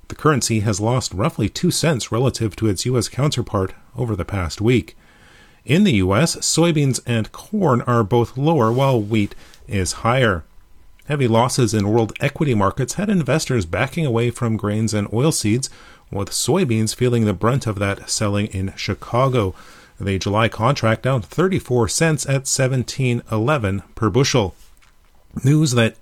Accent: American